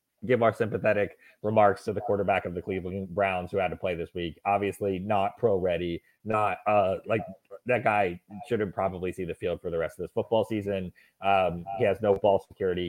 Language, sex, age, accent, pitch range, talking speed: English, male, 30-49, American, 95-115 Hz, 205 wpm